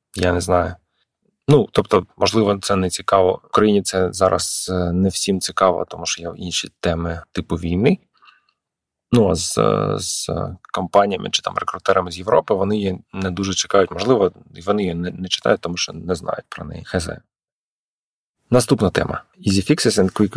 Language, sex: Ukrainian, male